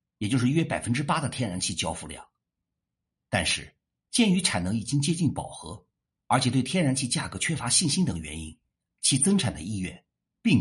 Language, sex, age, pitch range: Chinese, male, 50-69, 100-145 Hz